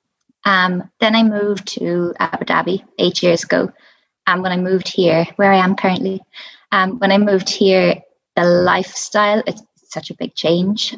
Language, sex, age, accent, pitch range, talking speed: English, female, 20-39, Irish, 175-205 Hz, 175 wpm